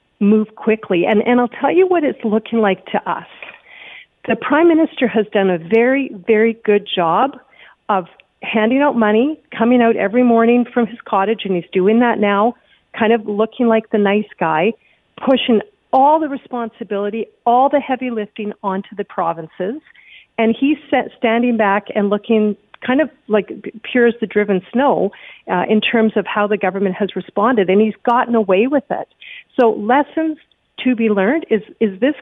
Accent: American